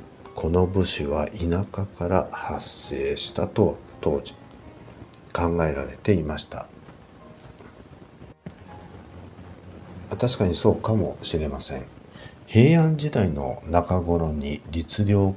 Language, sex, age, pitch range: Japanese, male, 50-69, 80-100 Hz